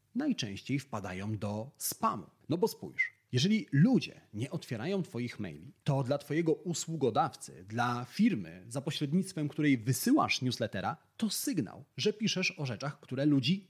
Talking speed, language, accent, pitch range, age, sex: 140 wpm, Polish, native, 125-175 Hz, 30-49, male